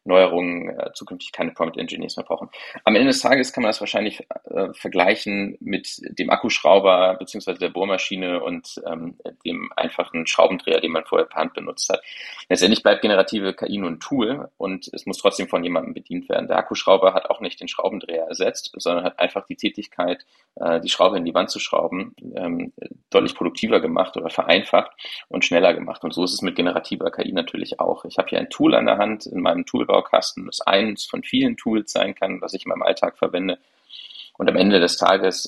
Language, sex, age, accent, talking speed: German, male, 30-49, German, 200 wpm